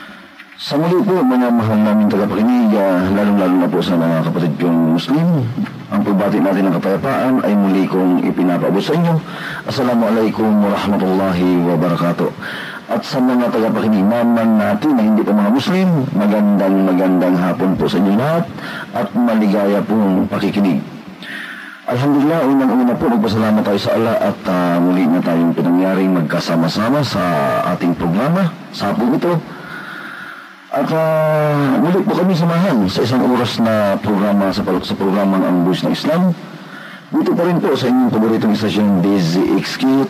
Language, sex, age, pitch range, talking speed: Filipino, male, 40-59, 95-145 Hz, 140 wpm